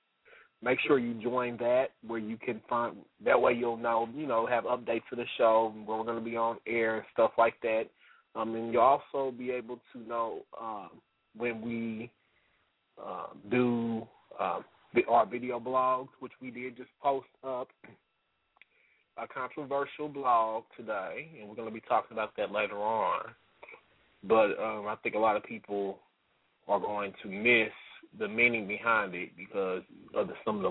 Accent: American